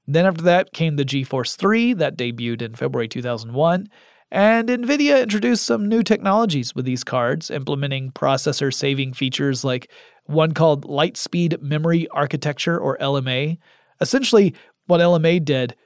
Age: 30-49